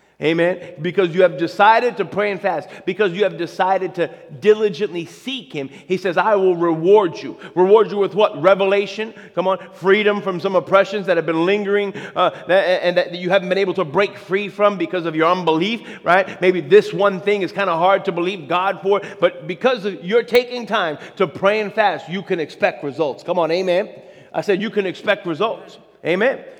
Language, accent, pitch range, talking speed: English, American, 180-200 Hz, 200 wpm